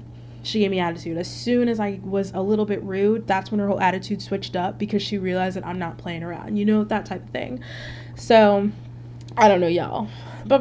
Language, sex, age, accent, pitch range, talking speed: English, female, 20-39, American, 165-215 Hz, 225 wpm